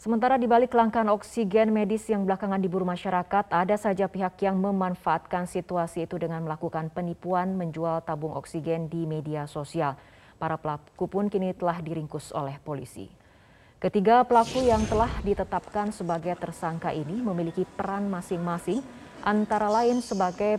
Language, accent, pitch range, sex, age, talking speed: Indonesian, native, 165-205 Hz, female, 20-39, 135 wpm